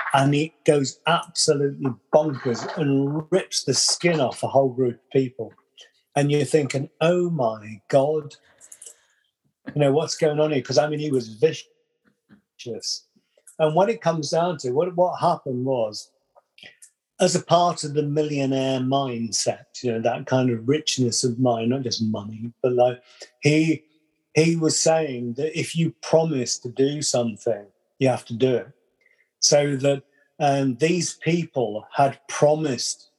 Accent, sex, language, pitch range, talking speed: British, male, English, 130-160 Hz, 155 wpm